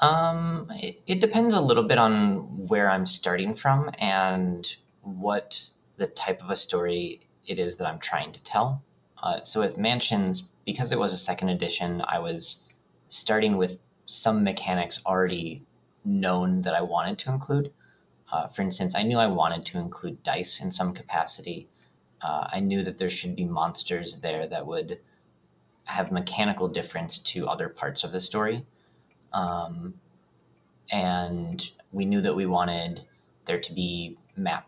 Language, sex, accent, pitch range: English, male, American, 90-130 Hz